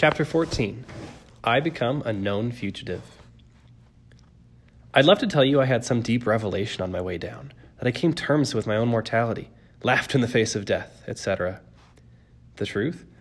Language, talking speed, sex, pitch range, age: English, 175 wpm, male, 105-140 Hz, 20-39